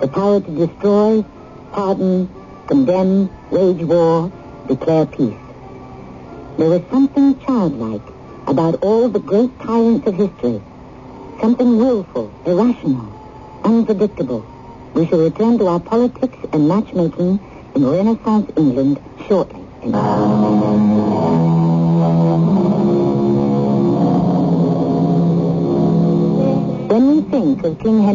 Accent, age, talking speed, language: American, 60-79, 95 wpm, English